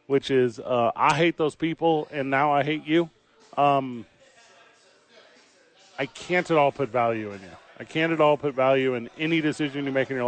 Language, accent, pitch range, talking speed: English, American, 135-170 Hz, 200 wpm